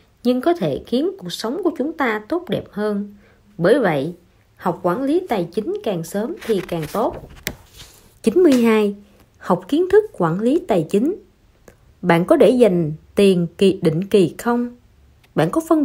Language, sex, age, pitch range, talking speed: Vietnamese, female, 20-39, 175-275 Hz, 165 wpm